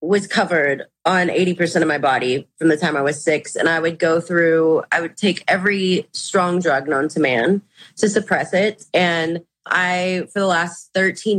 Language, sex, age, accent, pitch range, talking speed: English, female, 20-39, American, 160-200 Hz, 195 wpm